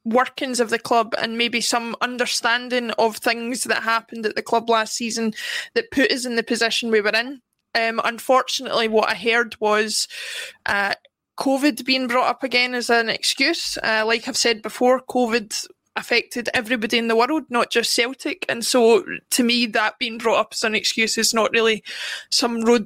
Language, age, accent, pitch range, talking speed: English, 20-39, British, 230-260 Hz, 185 wpm